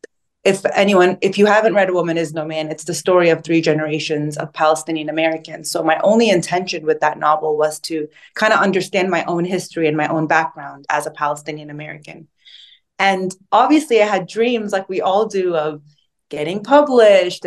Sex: female